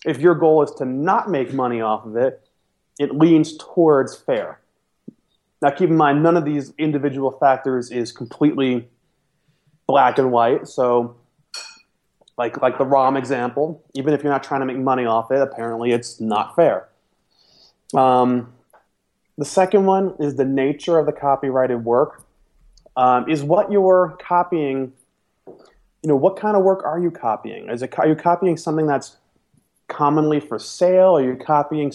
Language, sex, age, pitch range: English, male, 30-49, 130-170 Hz